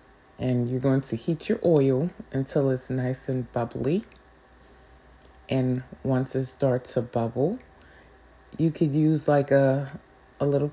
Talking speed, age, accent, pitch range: 140 wpm, 20-39, American, 125-145 Hz